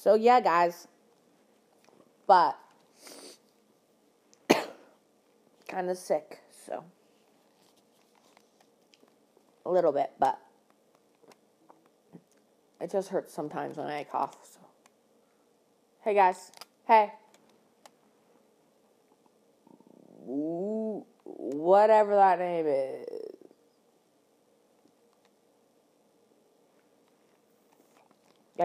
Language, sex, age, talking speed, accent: English, female, 30-49, 60 wpm, American